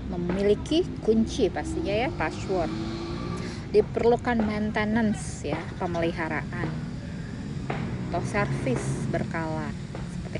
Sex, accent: female, native